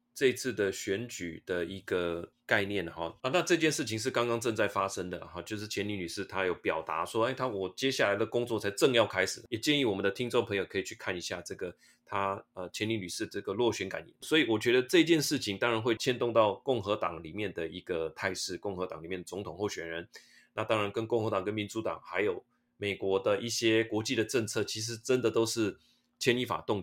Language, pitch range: Chinese, 95-120 Hz